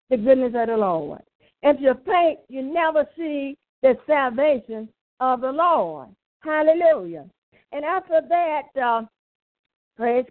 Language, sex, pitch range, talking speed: English, female, 230-300 Hz, 130 wpm